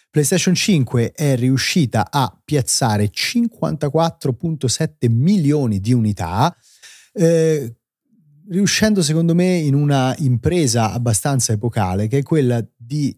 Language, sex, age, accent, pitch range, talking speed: Italian, male, 30-49, native, 105-140 Hz, 105 wpm